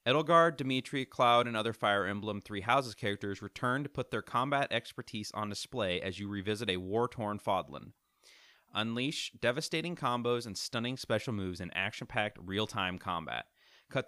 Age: 30-49